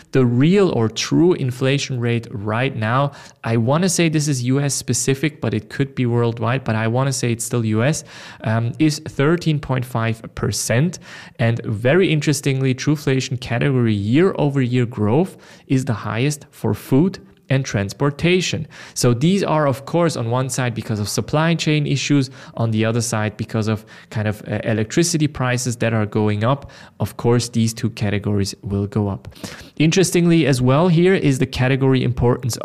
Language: English